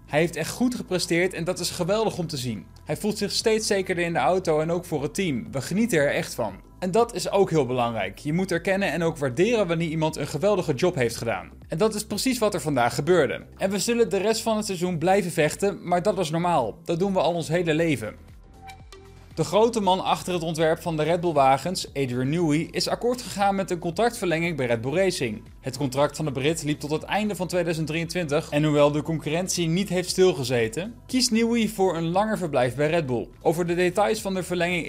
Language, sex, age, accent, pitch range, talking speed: Dutch, male, 20-39, Dutch, 145-185 Hz, 230 wpm